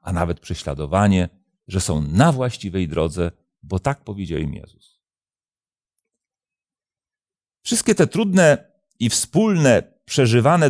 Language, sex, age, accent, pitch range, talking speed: Polish, male, 40-59, native, 95-145 Hz, 105 wpm